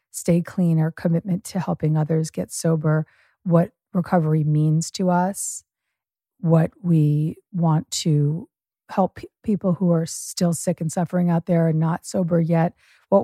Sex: female